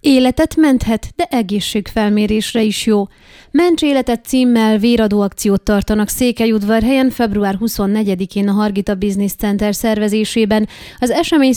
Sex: female